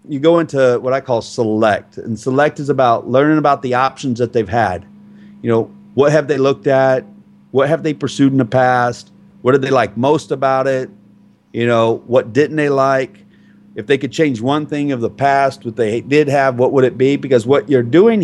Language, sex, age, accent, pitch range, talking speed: English, male, 30-49, American, 120-145 Hz, 215 wpm